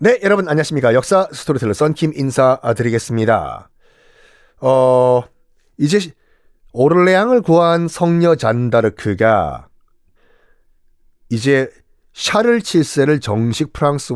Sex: male